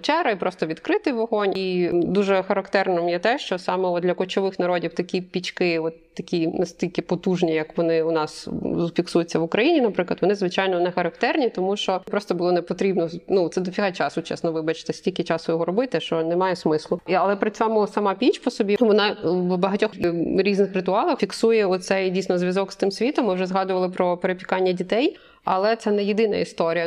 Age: 20-39